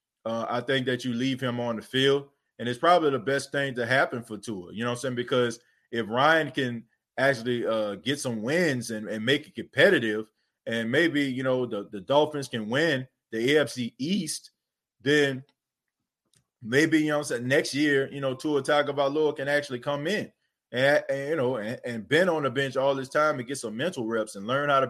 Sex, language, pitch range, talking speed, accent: male, English, 125-150 Hz, 220 wpm, American